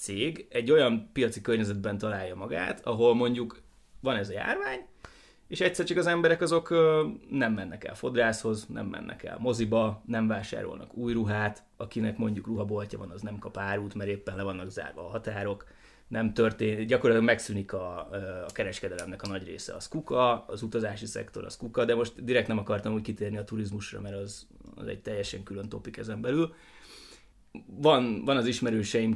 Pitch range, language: 105-120 Hz, Hungarian